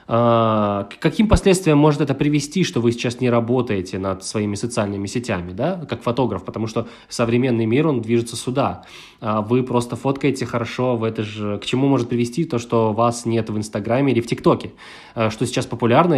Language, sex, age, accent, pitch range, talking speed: Ukrainian, male, 20-39, native, 115-150 Hz, 180 wpm